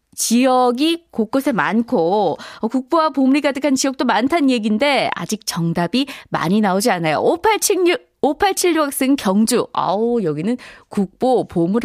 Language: Korean